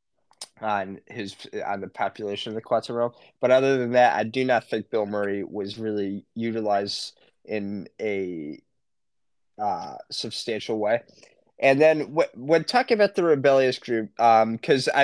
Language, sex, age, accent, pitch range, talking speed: English, male, 20-39, American, 100-130 Hz, 150 wpm